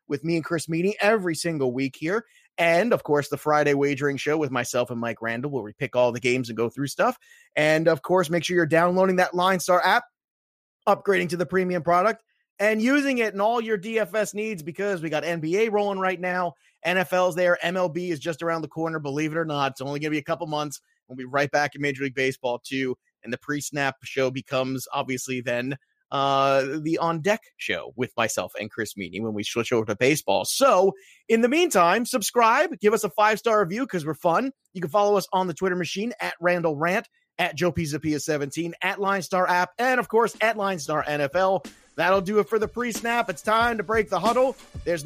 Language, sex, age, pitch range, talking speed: English, male, 30-49, 145-205 Hz, 220 wpm